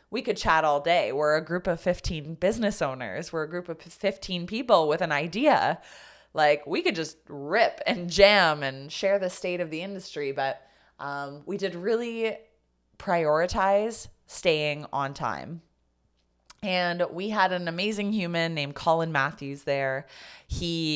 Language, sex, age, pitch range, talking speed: English, female, 20-39, 145-185 Hz, 155 wpm